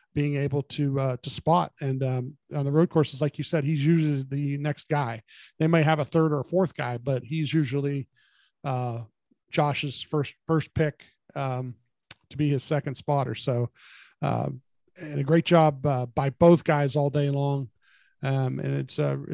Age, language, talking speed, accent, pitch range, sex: 40-59, English, 185 wpm, American, 135-160 Hz, male